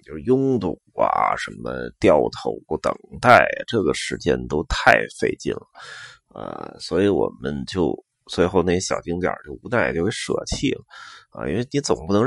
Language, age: Chinese, 20-39